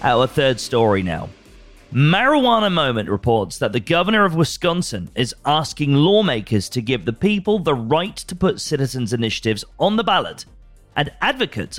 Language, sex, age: English, male, 40-59